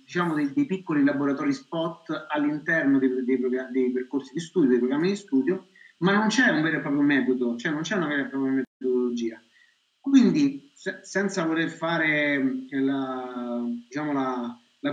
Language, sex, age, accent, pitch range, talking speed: Italian, male, 50-69, native, 145-230 Hz, 175 wpm